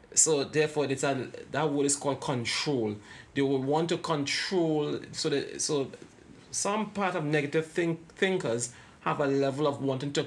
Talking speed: 170 wpm